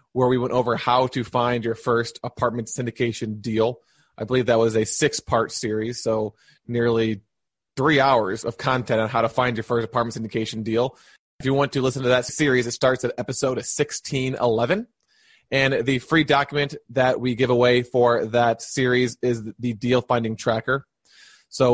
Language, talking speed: English, 175 wpm